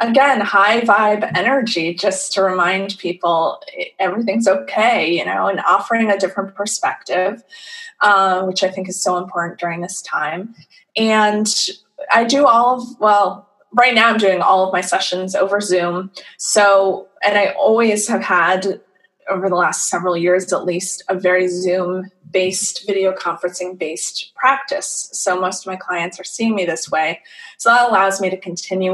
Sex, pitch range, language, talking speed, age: female, 185-230 Hz, English, 160 wpm, 20-39